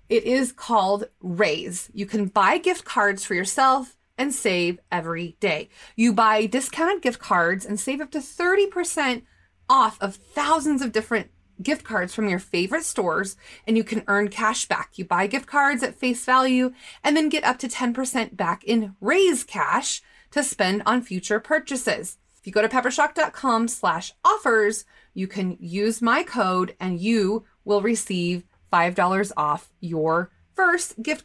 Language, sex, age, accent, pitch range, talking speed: English, female, 30-49, American, 200-275 Hz, 160 wpm